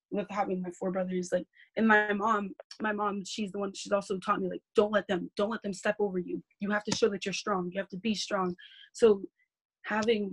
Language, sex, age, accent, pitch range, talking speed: English, female, 20-39, American, 185-210 Hz, 245 wpm